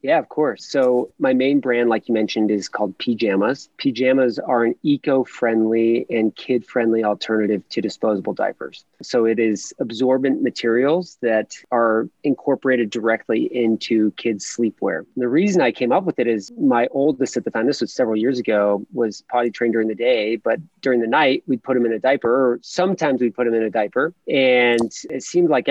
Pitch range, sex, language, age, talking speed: 115-135 Hz, male, English, 30-49, 195 wpm